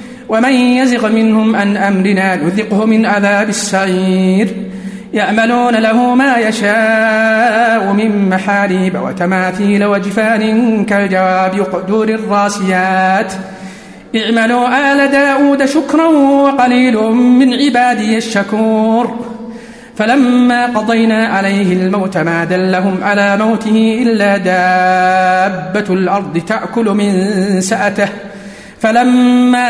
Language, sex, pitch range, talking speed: Arabic, male, 200-235 Hz, 85 wpm